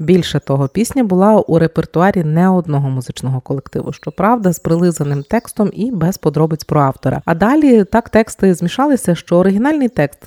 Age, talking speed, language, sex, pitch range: 30-49, 160 wpm, Ukrainian, female, 145-185 Hz